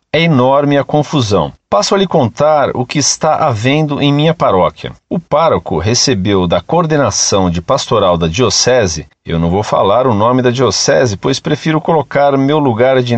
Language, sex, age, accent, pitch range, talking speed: Portuguese, male, 50-69, Brazilian, 110-165 Hz, 175 wpm